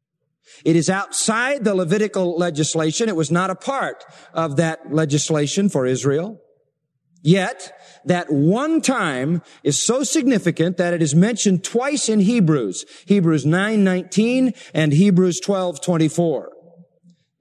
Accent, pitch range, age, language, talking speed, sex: American, 160-215 Hz, 40-59, English, 120 wpm, male